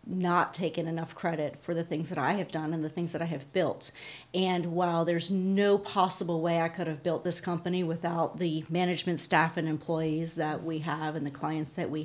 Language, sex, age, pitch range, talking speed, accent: English, female, 40-59, 160-180 Hz, 220 wpm, American